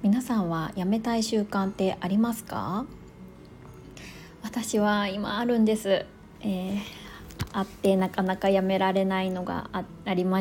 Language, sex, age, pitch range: Japanese, female, 20-39, 185-255 Hz